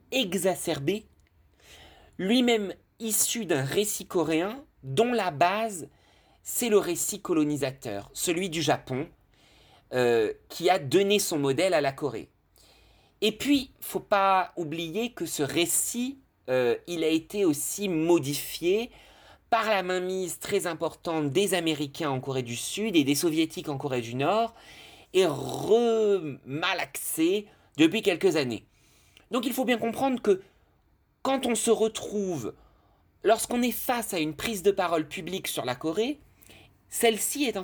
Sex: male